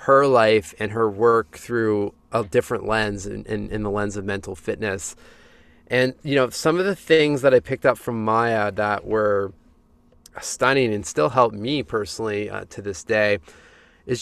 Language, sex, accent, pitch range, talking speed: English, male, American, 105-125 Hz, 180 wpm